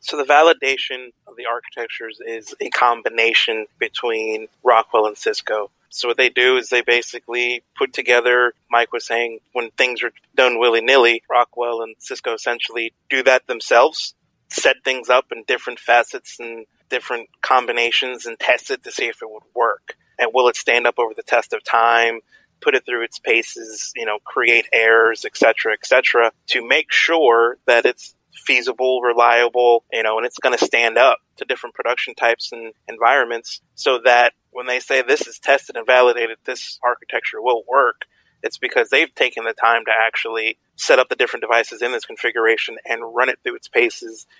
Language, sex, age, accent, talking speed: English, male, 30-49, American, 185 wpm